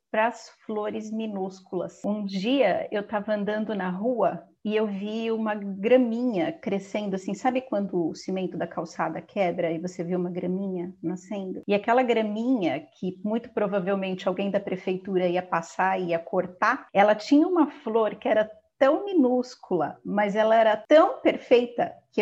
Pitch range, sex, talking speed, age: 200-265 Hz, female, 160 wpm, 30-49